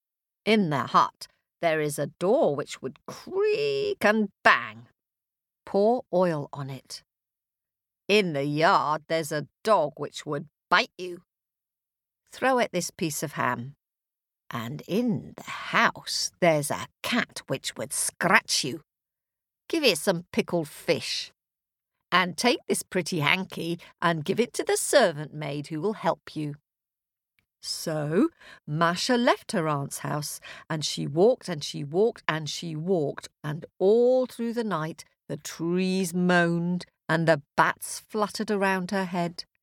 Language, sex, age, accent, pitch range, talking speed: English, female, 50-69, British, 150-205 Hz, 140 wpm